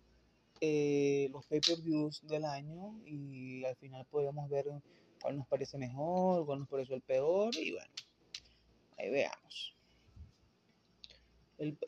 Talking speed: 120 wpm